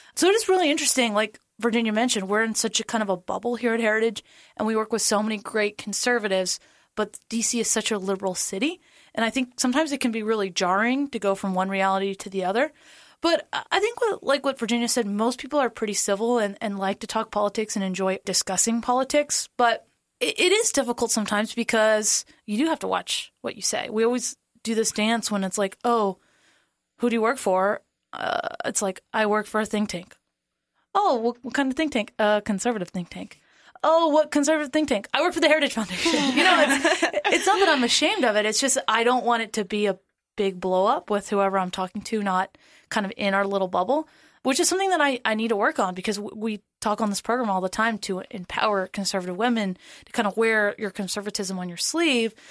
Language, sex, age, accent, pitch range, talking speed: English, female, 20-39, American, 205-270 Hz, 230 wpm